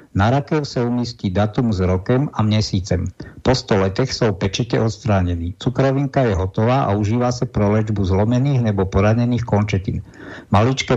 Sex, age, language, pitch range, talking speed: male, 50-69, Slovak, 100-120 Hz, 150 wpm